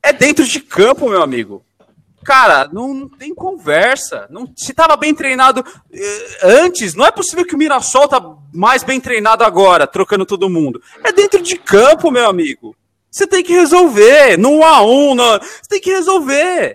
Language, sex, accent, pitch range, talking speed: Portuguese, male, Brazilian, 235-335 Hz, 170 wpm